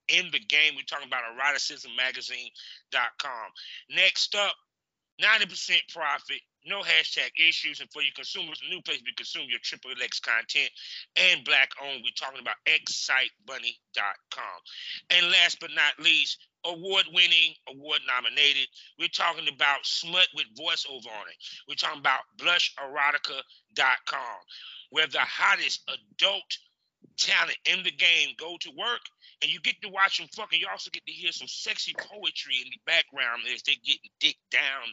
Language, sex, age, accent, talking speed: English, male, 30-49, American, 145 wpm